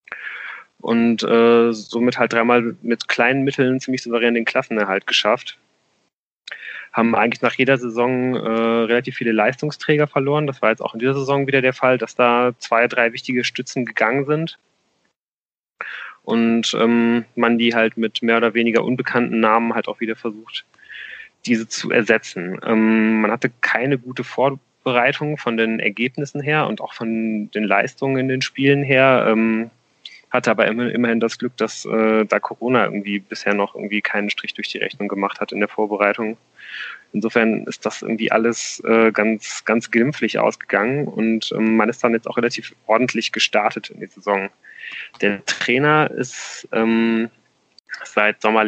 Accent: German